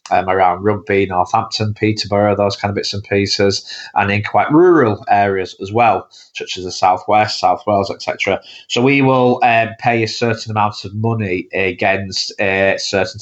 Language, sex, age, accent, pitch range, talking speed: English, male, 20-39, British, 95-110 Hz, 175 wpm